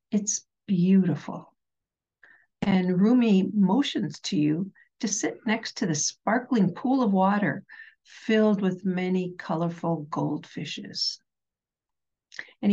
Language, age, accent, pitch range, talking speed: English, 60-79, American, 180-235 Hz, 105 wpm